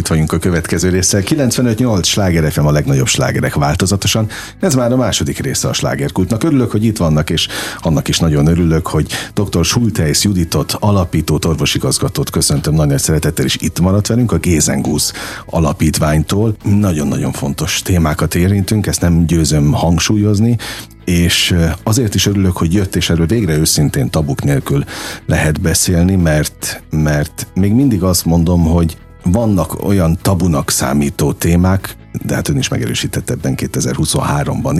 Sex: male